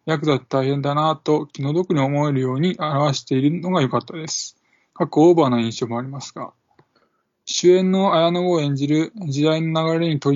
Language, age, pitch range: Japanese, 20-39, 135-160 Hz